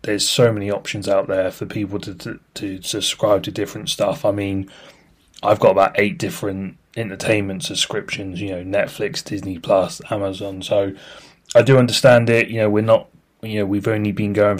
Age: 30-49